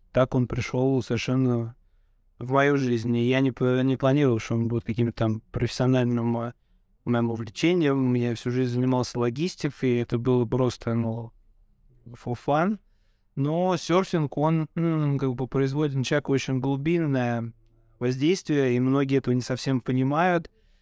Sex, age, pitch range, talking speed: male, 20-39, 120-140 Hz, 145 wpm